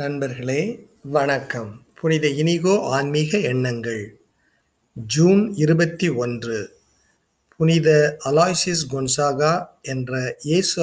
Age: 50-69